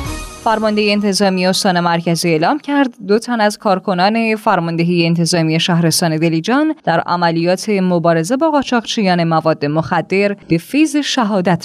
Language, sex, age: Persian, female, 10-29